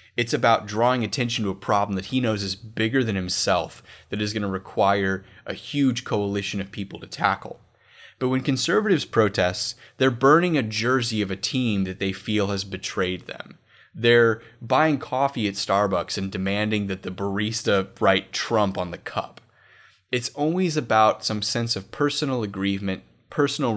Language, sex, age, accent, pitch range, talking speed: English, male, 20-39, American, 95-120 Hz, 170 wpm